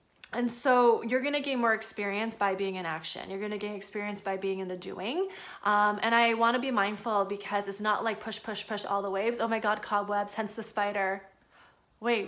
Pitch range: 200-250 Hz